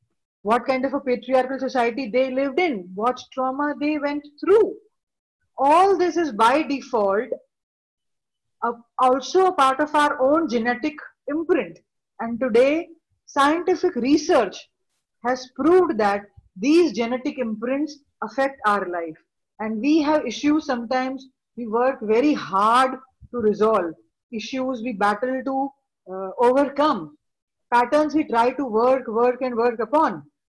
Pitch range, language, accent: 225-300 Hz, English, Indian